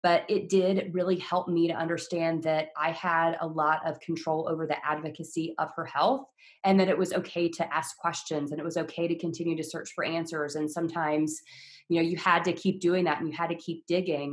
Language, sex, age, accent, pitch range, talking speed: English, female, 20-39, American, 155-175 Hz, 230 wpm